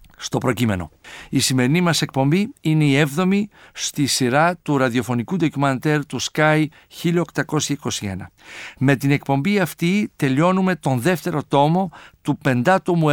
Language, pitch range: Greek, 140-175 Hz